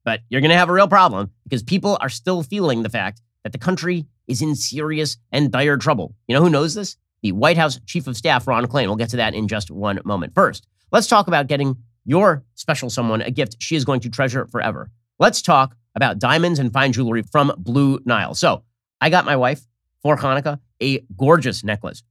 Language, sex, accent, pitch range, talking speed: English, male, American, 115-160 Hz, 220 wpm